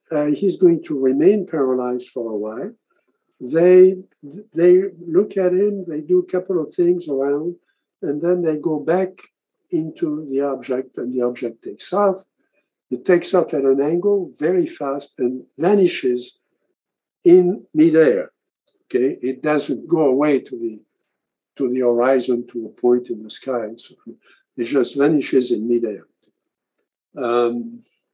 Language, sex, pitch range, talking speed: English, male, 125-185 Hz, 145 wpm